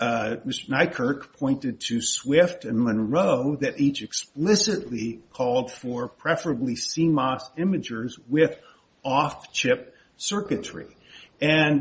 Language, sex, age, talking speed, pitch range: English, male, 50-69, 100 wpm, 125-165 Hz